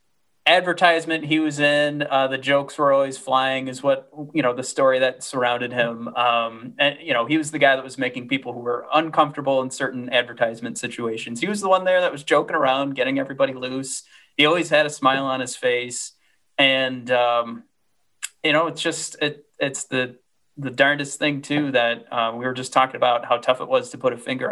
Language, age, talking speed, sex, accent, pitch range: English, 30-49, 210 wpm, male, American, 120-145 Hz